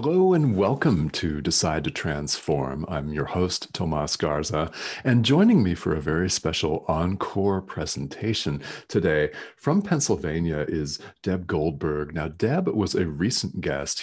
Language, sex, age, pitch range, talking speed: English, male, 40-59, 75-95 Hz, 140 wpm